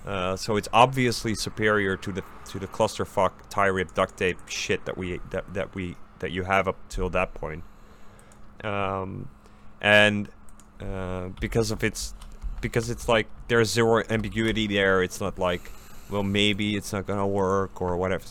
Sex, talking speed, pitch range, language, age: male, 165 wpm, 90-110 Hz, English, 30-49